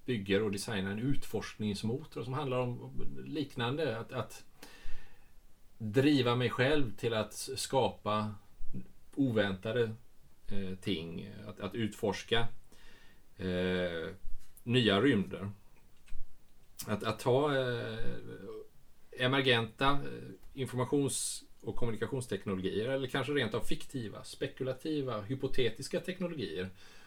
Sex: male